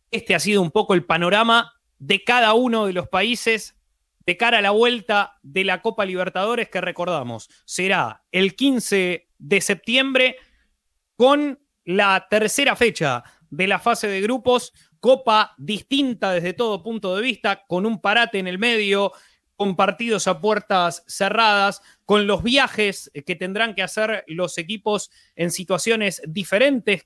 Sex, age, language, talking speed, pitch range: male, 30-49, Spanish, 150 wpm, 175-220 Hz